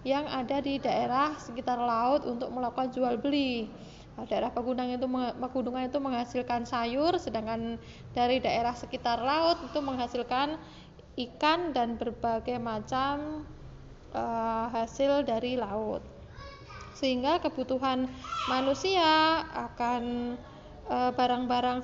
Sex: female